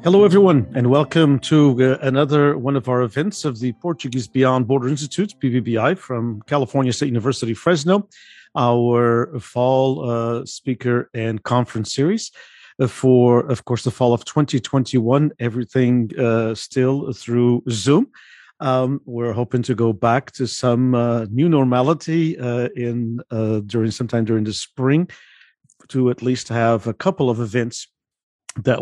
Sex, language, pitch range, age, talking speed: male, English, 115-135 Hz, 50-69, 145 wpm